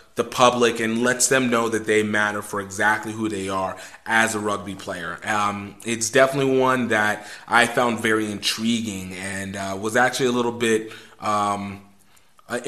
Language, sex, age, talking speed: English, male, 30-49, 175 wpm